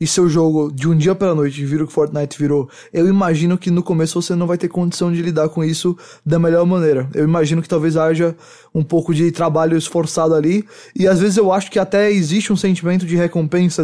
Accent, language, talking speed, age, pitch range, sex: Brazilian, English, 225 wpm, 20-39, 155-180 Hz, male